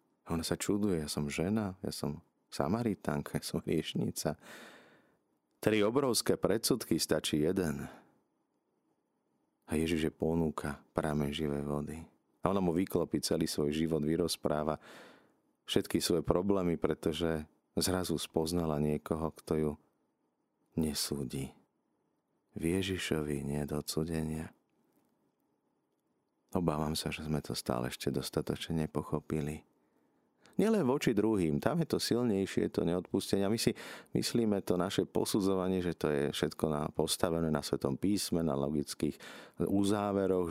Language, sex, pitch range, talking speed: Slovak, male, 75-90 Hz, 120 wpm